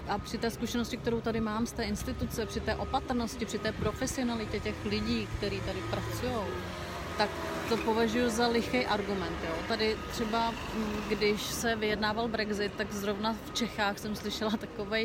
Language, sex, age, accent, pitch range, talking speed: Czech, female, 30-49, native, 205-235 Hz, 165 wpm